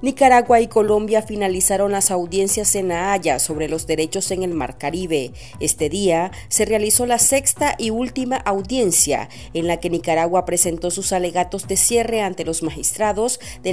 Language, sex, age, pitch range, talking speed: Spanish, female, 40-59, 165-225 Hz, 160 wpm